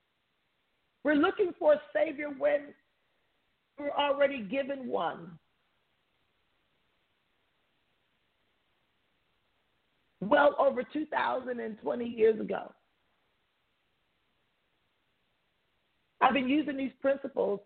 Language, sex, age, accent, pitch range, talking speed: English, female, 40-59, American, 235-300 Hz, 70 wpm